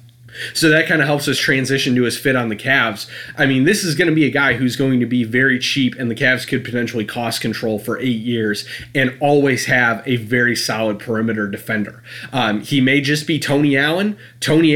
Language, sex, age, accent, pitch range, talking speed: English, male, 30-49, American, 115-135 Hz, 220 wpm